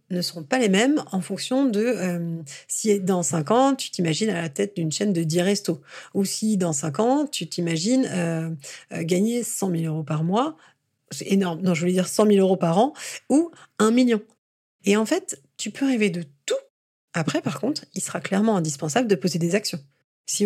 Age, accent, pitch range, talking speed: 40-59, French, 165-220 Hz, 210 wpm